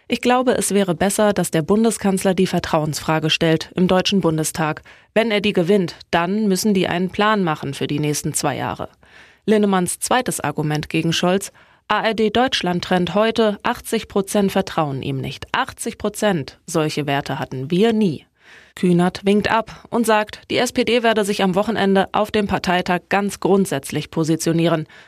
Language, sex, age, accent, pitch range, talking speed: German, female, 20-39, German, 165-215 Hz, 160 wpm